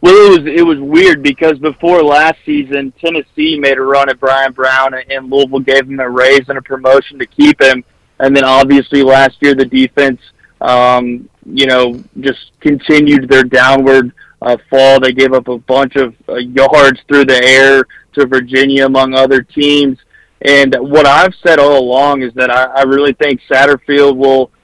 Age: 20-39